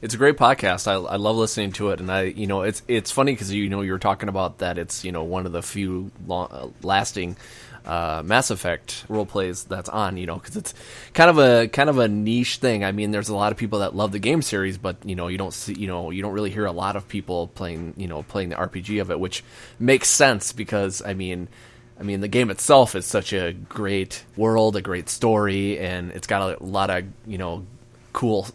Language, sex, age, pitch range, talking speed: English, male, 20-39, 95-120 Hz, 245 wpm